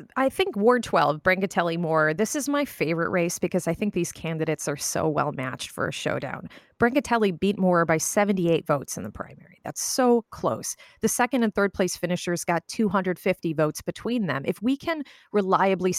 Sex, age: female, 30-49